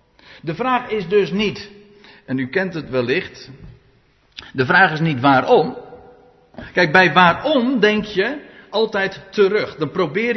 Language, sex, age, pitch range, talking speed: Dutch, male, 50-69, 135-210 Hz, 140 wpm